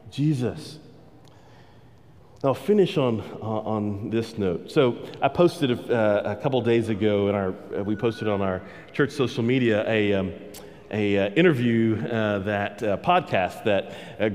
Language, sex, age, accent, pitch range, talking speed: English, male, 40-59, American, 115-170 Hz, 155 wpm